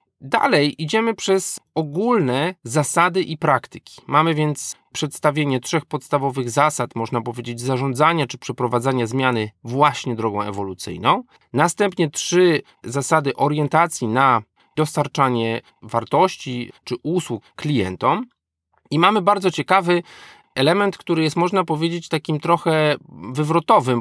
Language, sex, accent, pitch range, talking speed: Polish, male, native, 125-170 Hz, 110 wpm